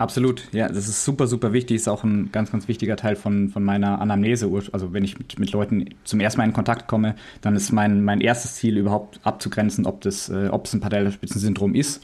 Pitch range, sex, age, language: 105-125 Hz, male, 20-39, German